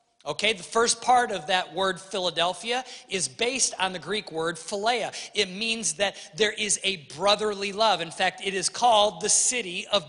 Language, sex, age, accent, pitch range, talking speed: English, male, 40-59, American, 170-230 Hz, 185 wpm